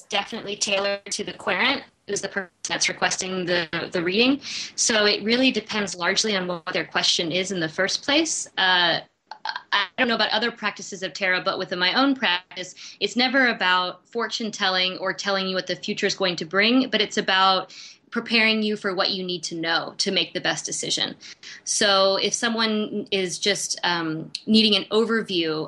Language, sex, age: English, female, 20-39